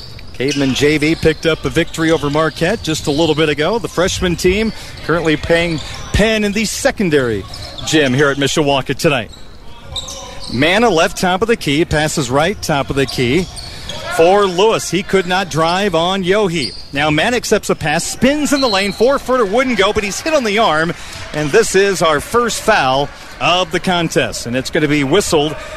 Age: 40-59